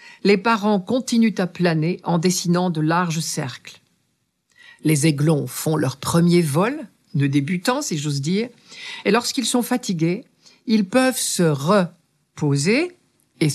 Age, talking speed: 50-69, 135 wpm